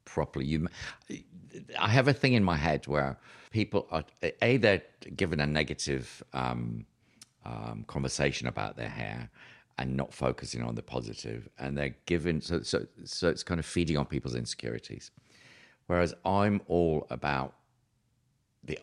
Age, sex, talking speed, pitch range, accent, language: 50-69, male, 150 wpm, 70-95 Hz, British, English